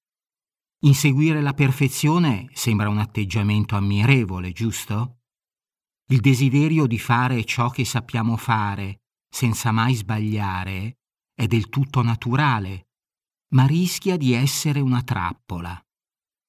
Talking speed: 105 wpm